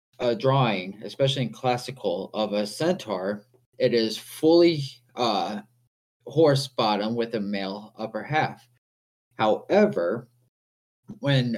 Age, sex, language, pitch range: 20-39, male, English, 105-130 Hz